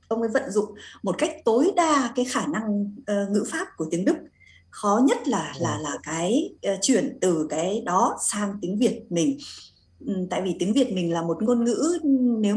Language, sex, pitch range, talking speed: Vietnamese, female, 190-275 Hz, 190 wpm